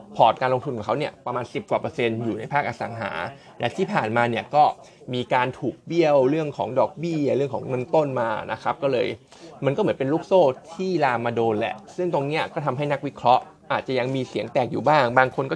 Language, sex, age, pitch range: Thai, male, 20-39, 120-155 Hz